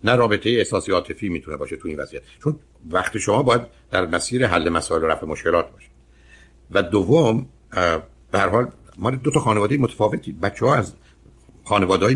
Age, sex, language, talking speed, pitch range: 60-79, male, Persian, 170 wpm, 70-110 Hz